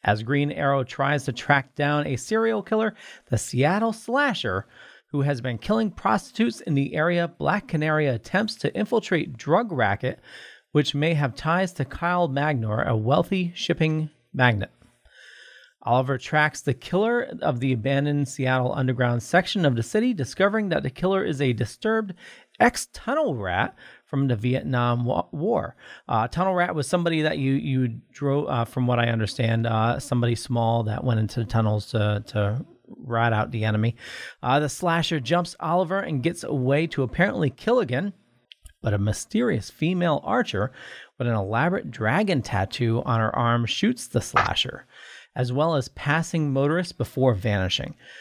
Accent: American